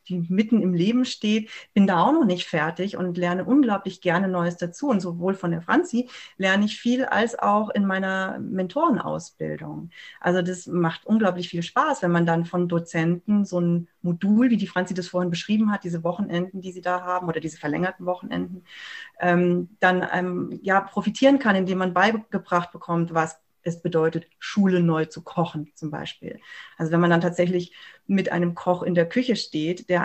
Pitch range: 170-205 Hz